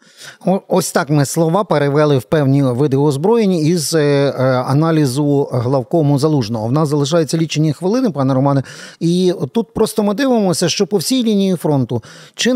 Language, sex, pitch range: Ukrainian, male, 140-180 Hz